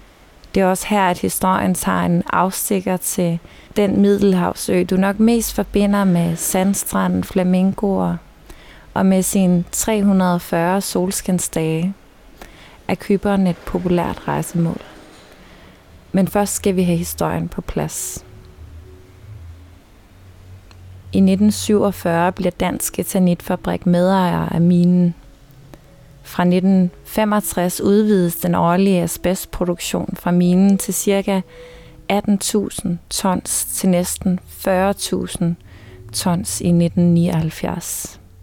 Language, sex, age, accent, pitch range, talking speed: Danish, female, 20-39, native, 145-195 Hz, 95 wpm